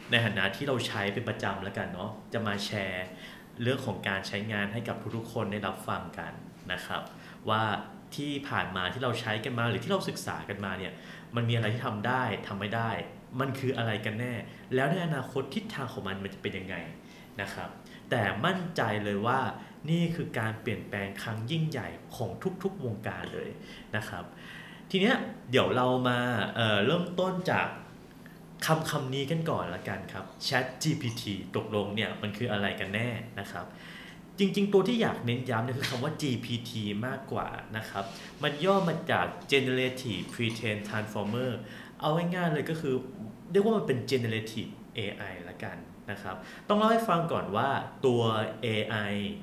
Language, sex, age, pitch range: Thai, male, 20-39, 100-140 Hz